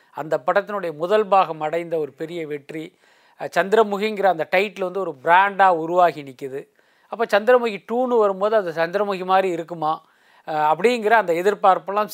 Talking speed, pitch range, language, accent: 135 wpm, 160-205 Hz, Tamil, native